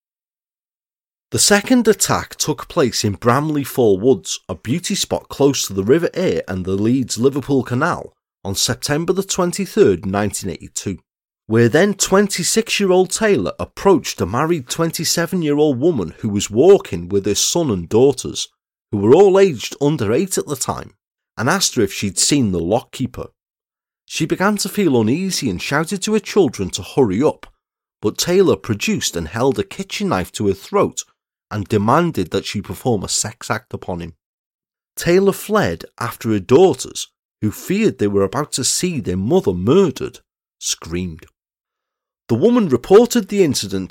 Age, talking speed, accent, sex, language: 30-49, 155 wpm, British, male, English